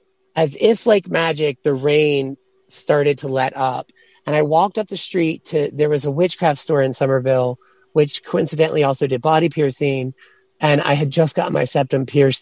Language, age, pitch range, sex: English, 30-49, 140-175 Hz, male